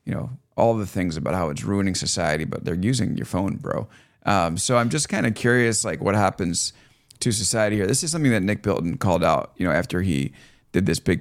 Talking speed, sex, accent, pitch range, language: 235 wpm, male, American, 100-125 Hz, English